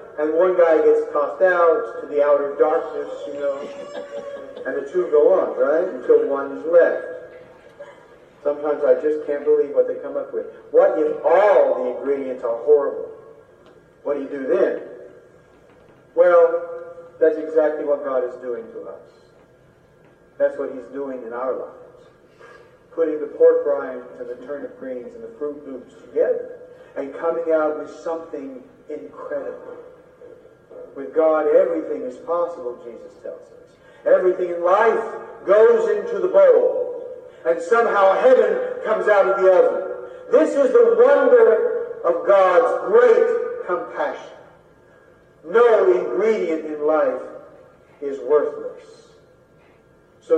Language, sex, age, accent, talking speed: English, male, 50-69, American, 140 wpm